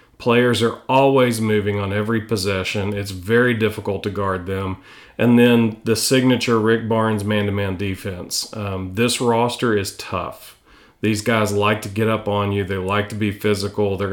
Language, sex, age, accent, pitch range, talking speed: English, male, 40-59, American, 105-120 Hz, 170 wpm